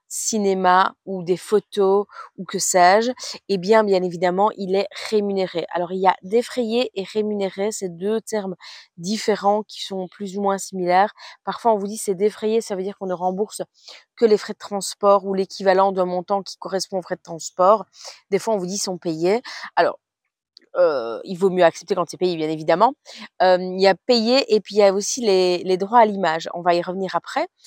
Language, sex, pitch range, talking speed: French, female, 185-215 Hz, 210 wpm